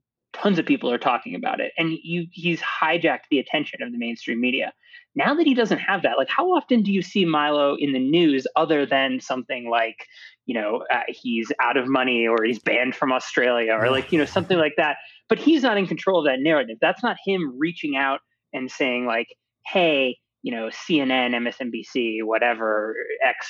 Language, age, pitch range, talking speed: English, 20-39, 130-215 Hz, 200 wpm